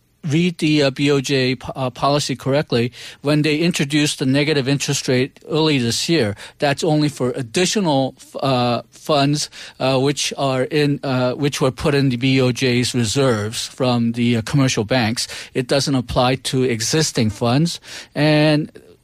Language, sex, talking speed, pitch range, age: English, male, 155 wpm, 130-155 Hz, 40-59